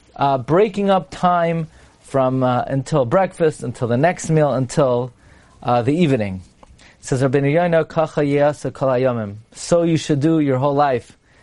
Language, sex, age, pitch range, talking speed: English, male, 40-59, 130-165 Hz, 125 wpm